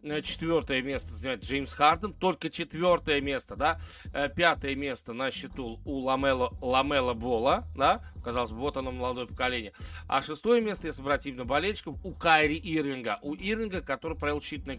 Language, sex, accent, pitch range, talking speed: Russian, male, native, 110-160 Hz, 150 wpm